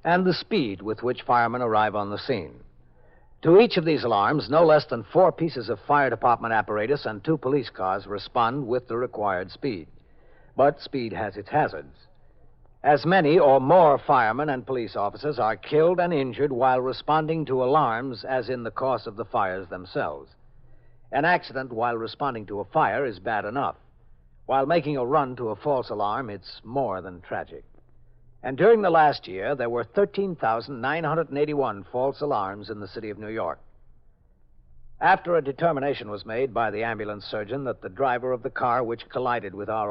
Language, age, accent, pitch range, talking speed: English, 60-79, American, 105-145 Hz, 180 wpm